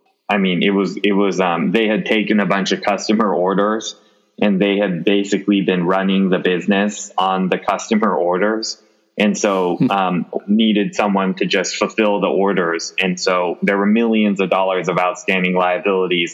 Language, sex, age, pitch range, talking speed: English, male, 20-39, 95-105 Hz, 175 wpm